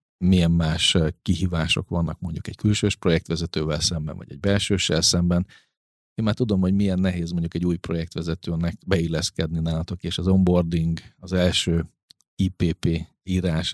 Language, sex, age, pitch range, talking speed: Hungarian, male, 40-59, 80-95 Hz, 140 wpm